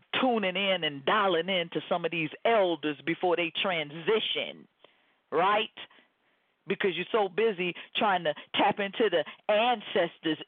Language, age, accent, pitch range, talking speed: English, 40-59, American, 160-215 Hz, 135 wpm